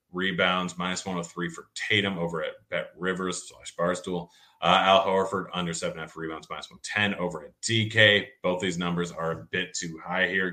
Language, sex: English, male